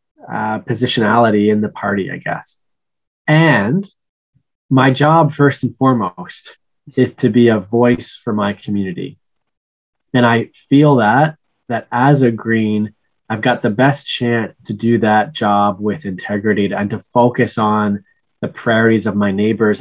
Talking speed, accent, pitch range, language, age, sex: 150 wpm, American, 110-130 Hz, English, 20-39, male